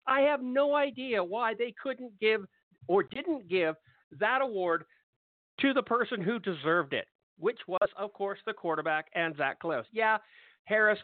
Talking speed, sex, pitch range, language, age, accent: 165 wpm, male, 180-255 Hz, English, 50-69, American